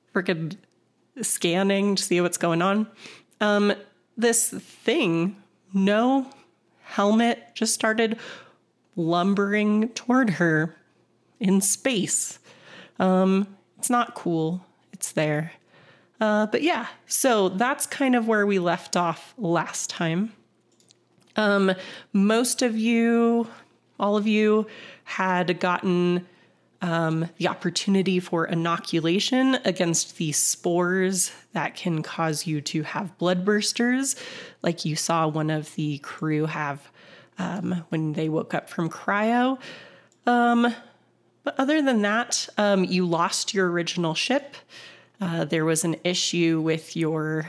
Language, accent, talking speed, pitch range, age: English, American, 120 wpm, 165-215 Hz, 30-49